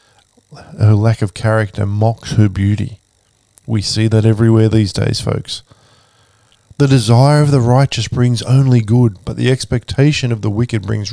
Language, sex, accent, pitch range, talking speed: English, male, Australian, 110-130 Hz, 155 wpm